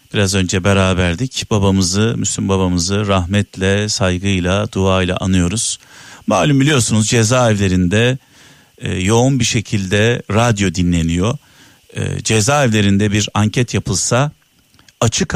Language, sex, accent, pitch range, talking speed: Turkish, male, native, 100-135 Hz, 100 wpm